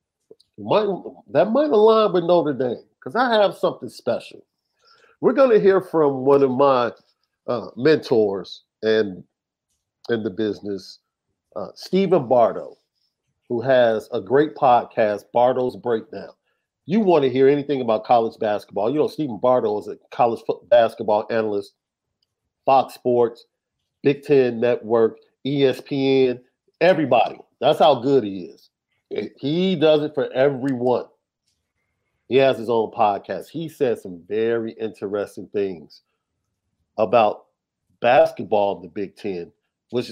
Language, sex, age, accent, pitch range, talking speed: English, male, 50-69, American, 110-150 Hz, 130 wpm